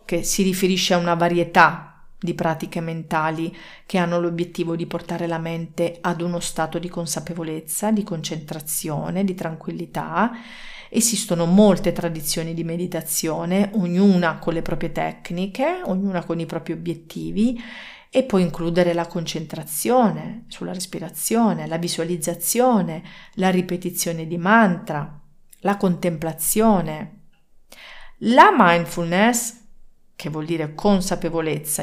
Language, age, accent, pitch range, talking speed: Italian, 40-59, native, 165-215 Hz, 115 wpm